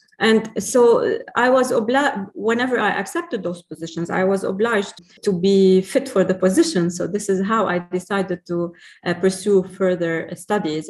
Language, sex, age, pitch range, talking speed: English, female, 30-49, 170-200 Hz, 165 wpm